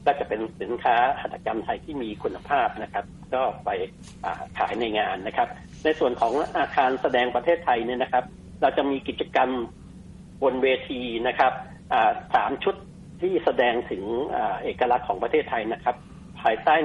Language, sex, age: Thai, male, 60-79